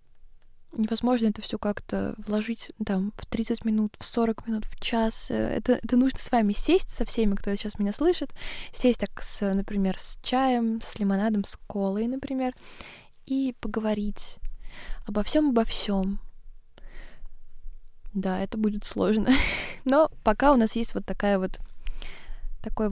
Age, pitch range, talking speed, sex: 20-39, 200-230 Hz, 145 wpm, female